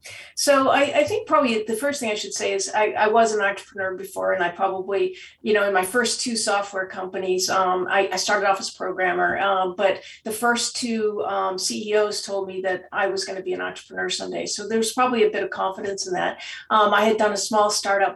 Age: 40-59